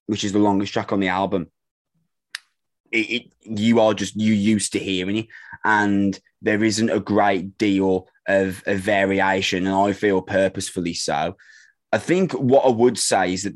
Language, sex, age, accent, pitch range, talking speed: English, male, 20-39, British, 95-110 Hz, 175 wpm